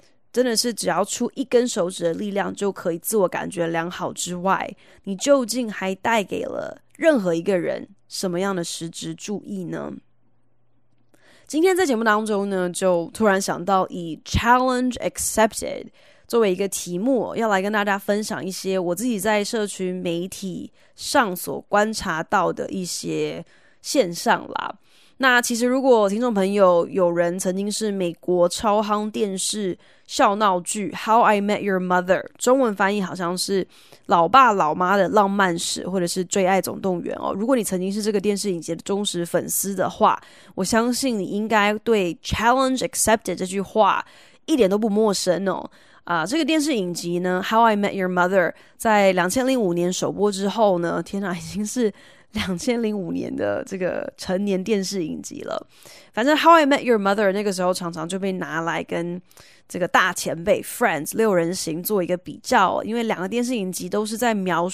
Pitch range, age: 180-220 Hz, 20-39